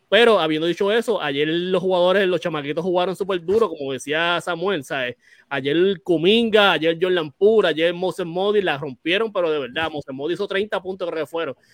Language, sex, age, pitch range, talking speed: Spanish, male, 20-39, 155-190 Hz, 185 wpm